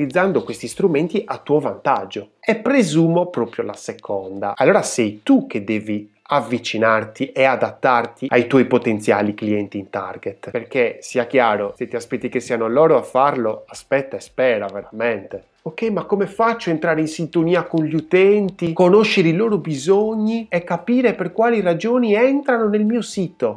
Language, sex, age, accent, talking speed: Italian, male, 30-49, native, 160 wpm